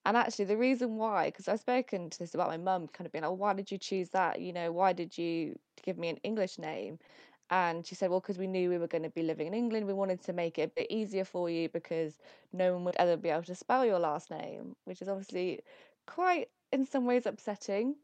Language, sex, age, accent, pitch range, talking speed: English, female, 20-39, British, 180-210 Hz, 260 wpm